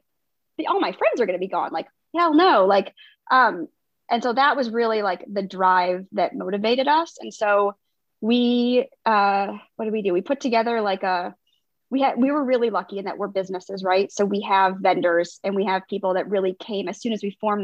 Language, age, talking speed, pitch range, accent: English, 20-39, 220 wpm, 185-230 Hz, American